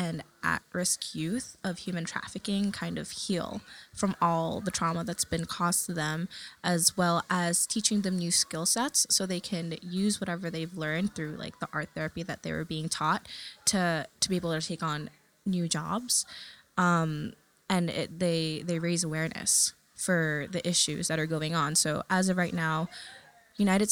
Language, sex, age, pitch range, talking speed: English, female, 20-39, 165-190 Hz, 180 wpm